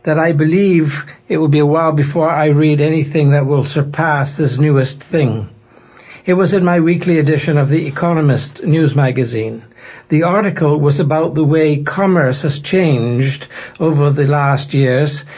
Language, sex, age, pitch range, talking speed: English, male, 60-79, 140-165 Hz, 165 wpm